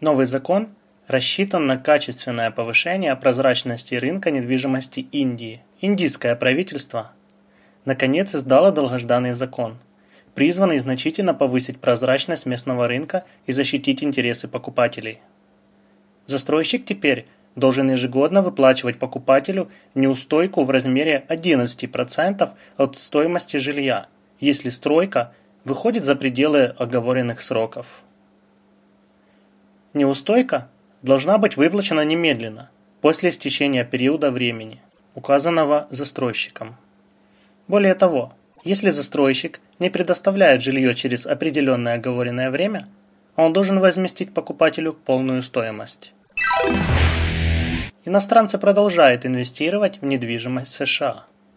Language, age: Russian, 20-39